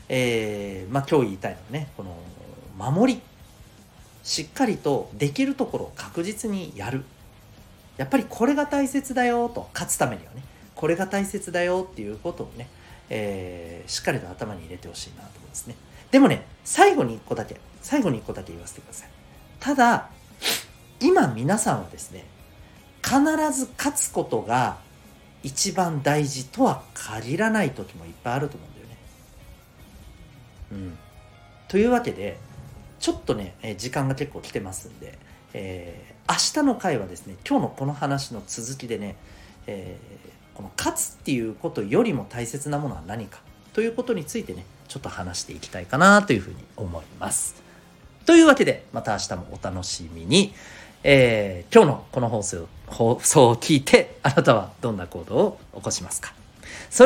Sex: male